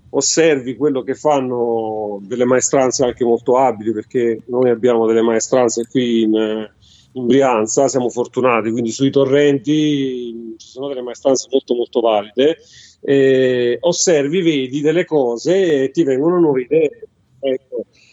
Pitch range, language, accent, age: 125-155 Hz, Italian, native, 40-59